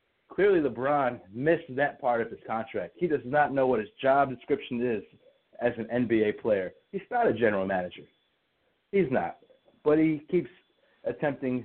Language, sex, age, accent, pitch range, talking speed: English, male, 30-49, American, 115-145 Hz, 165 wpm